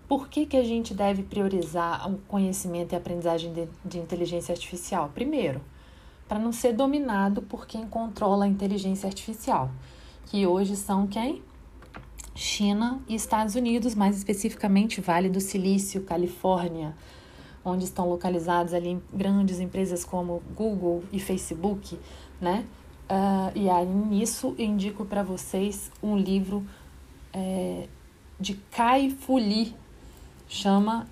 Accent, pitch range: Brazilian, 175-215 Hz